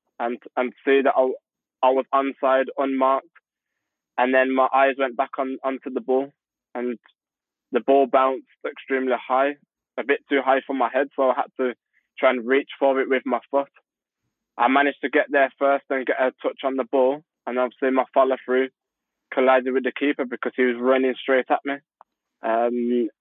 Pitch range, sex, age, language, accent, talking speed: 125-135 Hz, male, 20-39, English, British, 190 wpm